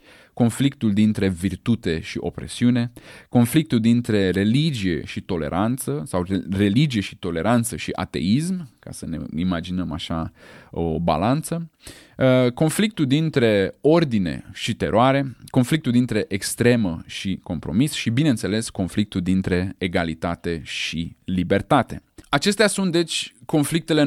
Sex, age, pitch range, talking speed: male, 20-39, 95-135 Hz, 110 wpm